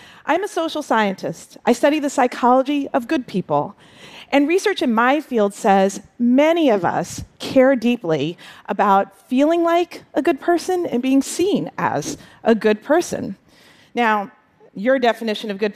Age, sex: 40-59, female